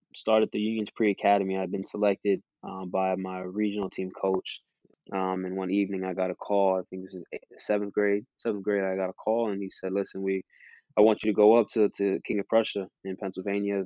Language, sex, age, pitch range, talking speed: English, male, 20-39, 95-105 Hz, 225 wpm